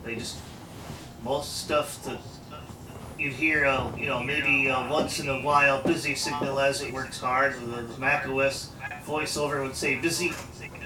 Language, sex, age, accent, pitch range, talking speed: English, male, 40-59, American, 130-155 Hz, 160 wpm